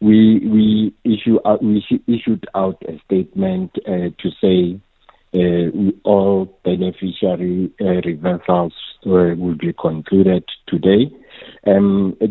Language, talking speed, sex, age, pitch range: English, 120 wpm, male, 50-69, 90-105 Hz